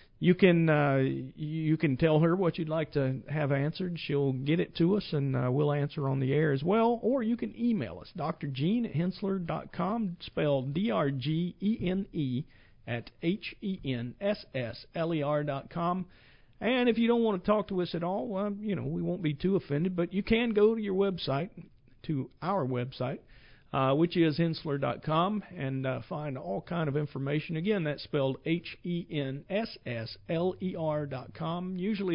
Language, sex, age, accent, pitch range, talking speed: English, male, 50-69, American, 135-185 Hz, 175 wpm